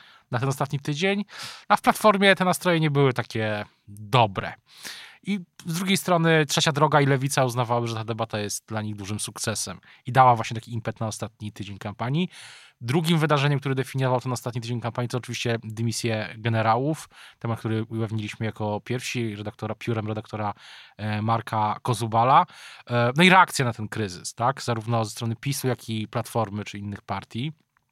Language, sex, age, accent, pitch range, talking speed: Polish, male, 20-39, native, 115-150 Hz, 170 wpm